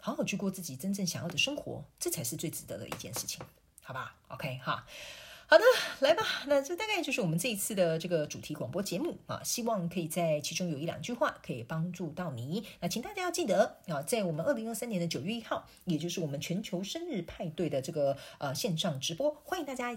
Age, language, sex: 40-59, Chinese, female